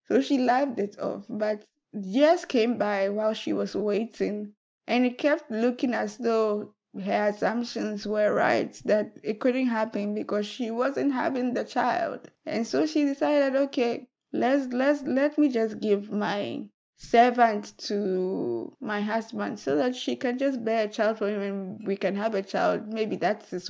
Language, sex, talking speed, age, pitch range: English, female, 170 wpm, 20-39, 205-245 Hz